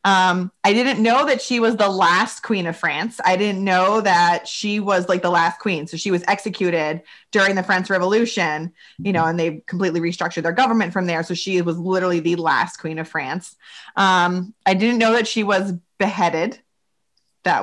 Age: 20-39